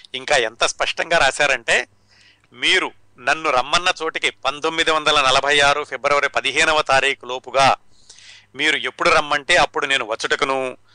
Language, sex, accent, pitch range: Telugu, male, native, 125-155 Hz